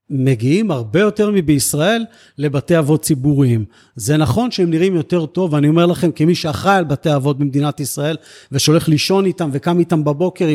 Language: Hebrew